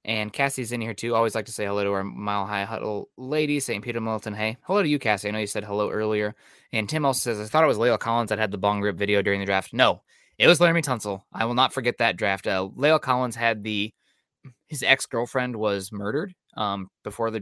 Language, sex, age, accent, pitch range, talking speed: English, male, 20-39, American, 100-120 Hz, 250 wpm